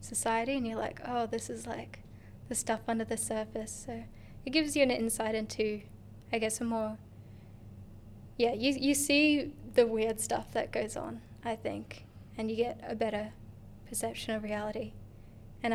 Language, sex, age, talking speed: English, female, 10-29, 170 wpm